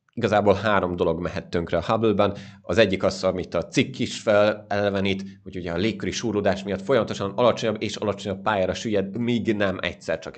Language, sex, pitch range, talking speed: Hungarian, male, 95-110 Hz, 185 wpm